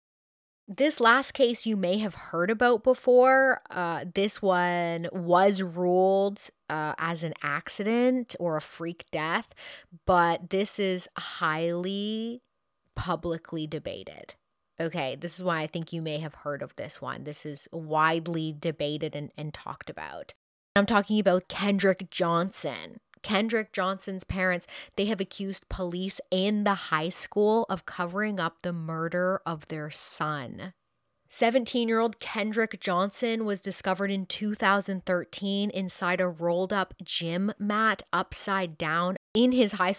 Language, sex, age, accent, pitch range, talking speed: English, female, 20-39, American, 170-205 Hz, 135 wpm